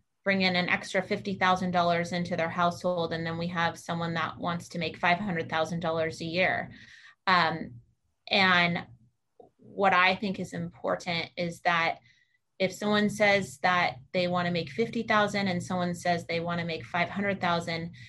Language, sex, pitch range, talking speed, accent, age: English, female, 175-205 Hz, 145 wpm, American, 30-49